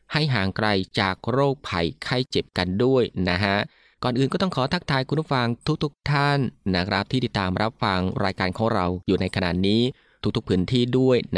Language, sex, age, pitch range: Thai, male, 20-39, 100-130 Hz